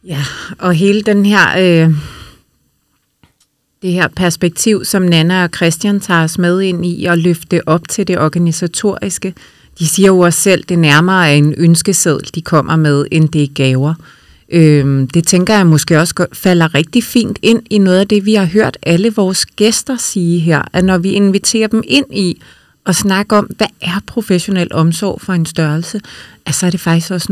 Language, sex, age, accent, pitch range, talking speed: Danish, female, 30-49, native, 165-200 Hz, 190 wpm